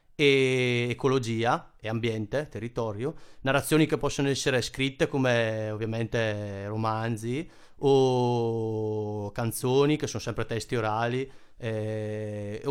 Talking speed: 100 wpm